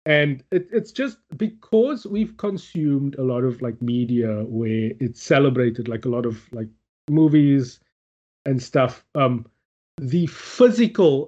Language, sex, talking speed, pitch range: English, male, 140 wpm, 115-155 Hz